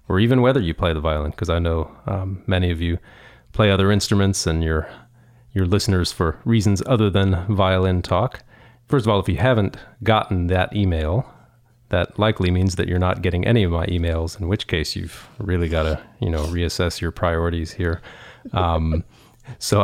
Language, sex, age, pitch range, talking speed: English, male, 30-49, 85-110 Hz, 190 wpm